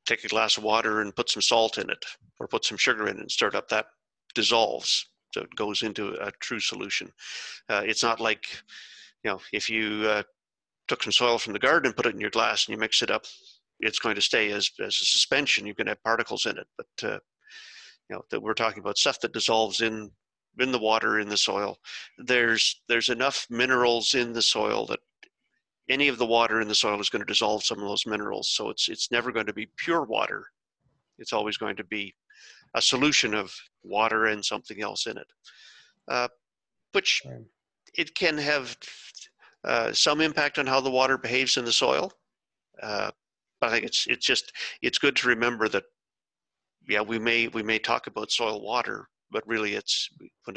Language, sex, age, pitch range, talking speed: English, male, 40-59, 110-135 Hz, 205 wpm